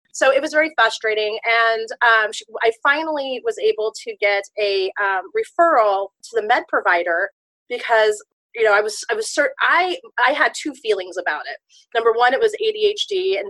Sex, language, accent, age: female, English, American, 30-49